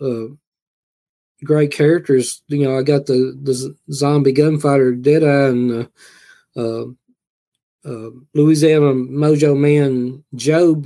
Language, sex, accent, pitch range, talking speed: English, male, American, 125-150 Hz, 115 wpm